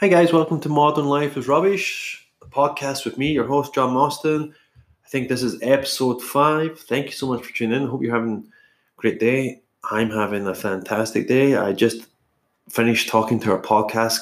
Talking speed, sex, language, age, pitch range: 200 wpm, male, English, 20-39, 105-130 Hz